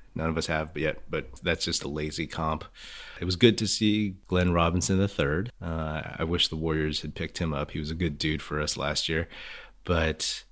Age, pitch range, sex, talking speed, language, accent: 30-49, 75-85 Hz, male, 215 wpm, English, American